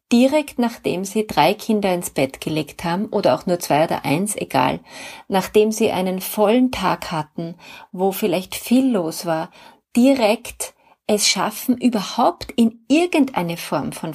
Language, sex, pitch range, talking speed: German, female, 185-245 Hz, 150 wpm